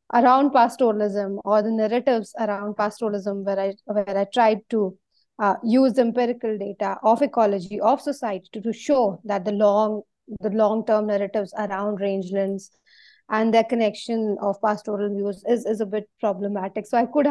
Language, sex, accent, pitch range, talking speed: English, female, Indian, 205-240 Hz, 165 wpm